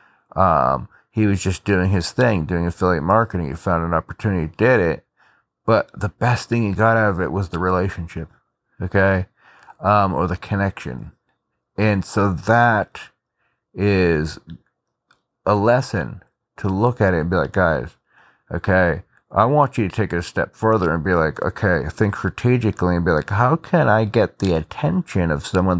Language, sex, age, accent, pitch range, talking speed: English, male, 30-49, American, 90-115 Hz, 170 wpm